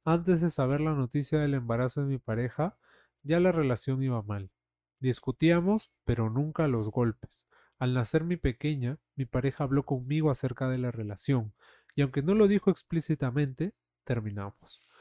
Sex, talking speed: male, 155 wpm